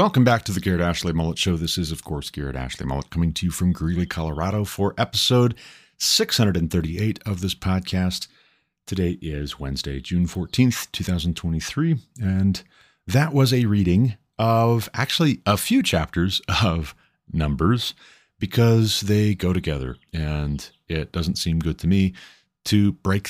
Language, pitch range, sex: English, 85-120 Hz, male